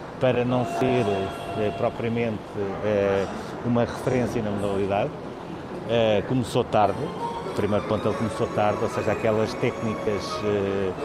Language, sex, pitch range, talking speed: Portuguese, male, 105-120 Hz, 105 wpm